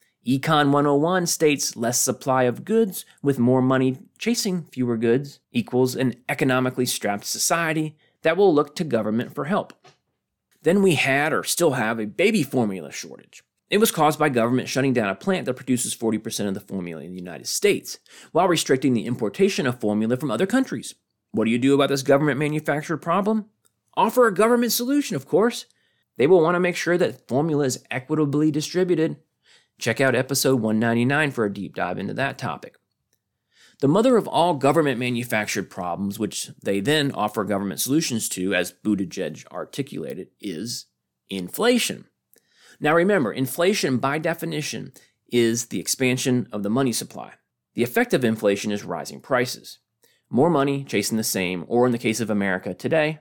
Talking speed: 165 wpm